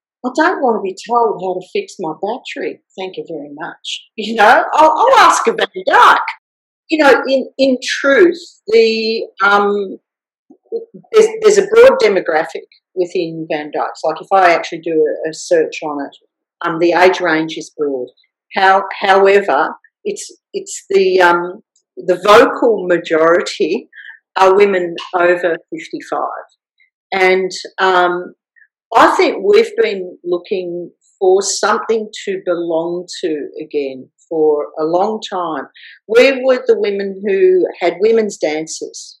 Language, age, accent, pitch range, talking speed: English, 50-69, Australian, 175-280 Hz, 145 wpm